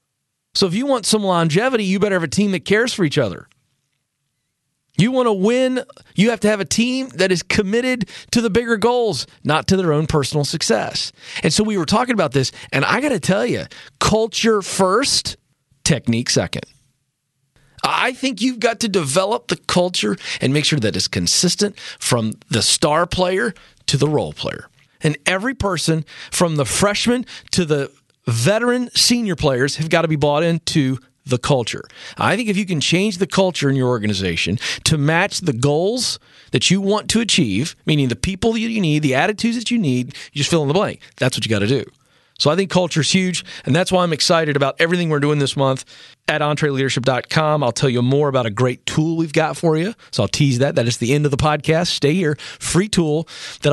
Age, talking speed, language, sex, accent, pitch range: 40-59, 210 wpm, English, male, American, 135-200 Hz